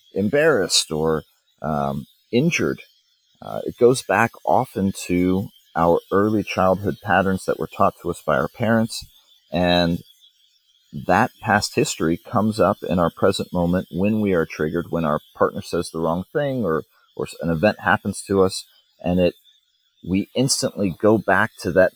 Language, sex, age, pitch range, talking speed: English, male, 30-49, 85-100 Hz, 160 wpm